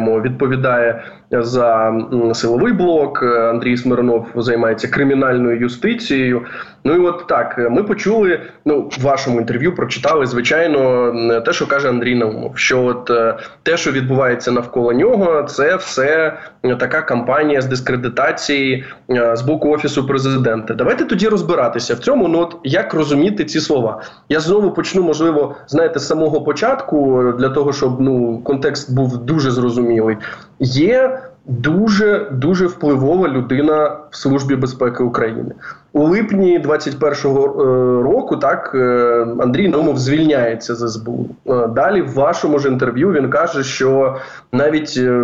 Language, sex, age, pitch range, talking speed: Ukrainian, male, 20-39, 120-150 Hz, 130 wpm